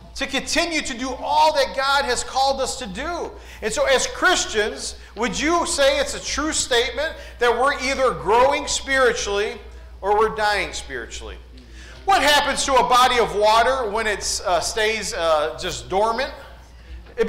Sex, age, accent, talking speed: male, 40-59, American, 160 wpm